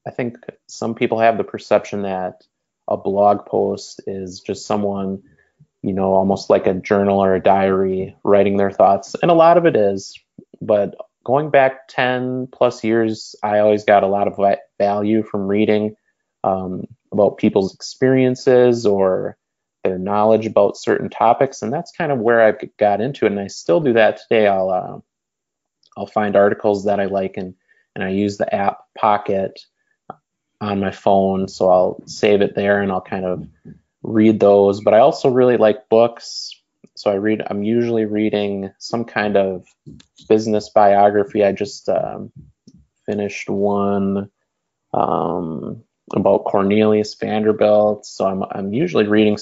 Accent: American